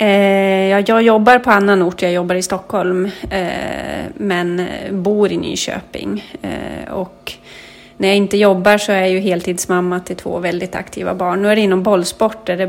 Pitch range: 180-210 Hz